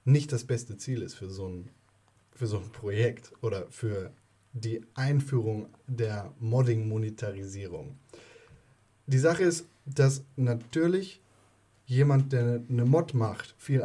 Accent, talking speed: German, 115 wpm